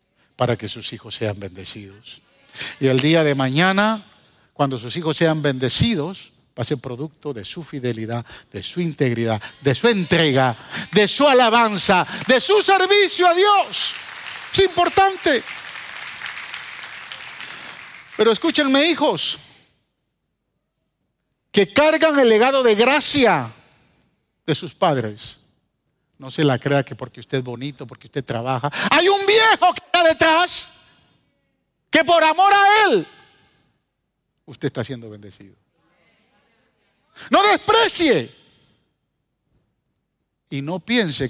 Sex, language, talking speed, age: male, Spanish, 120 wpm, 50-69